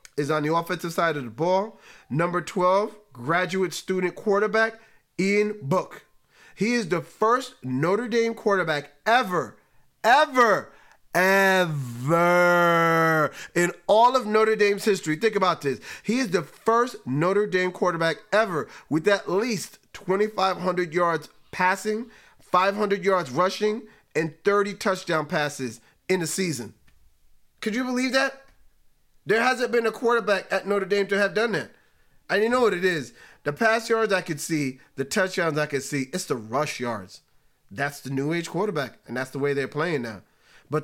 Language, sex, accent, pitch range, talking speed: English, male, American, 155-205 Hz, 160 wpm